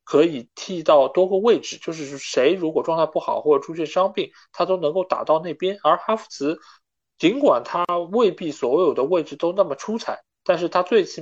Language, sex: Chinese, male